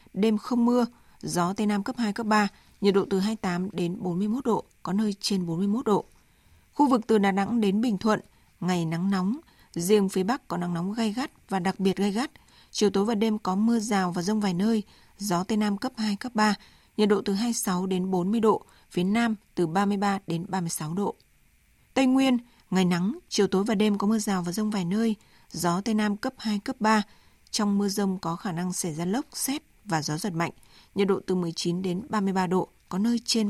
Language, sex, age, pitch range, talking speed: Vietnamese, female, 20-39, 185-225 Hz, 220 wpm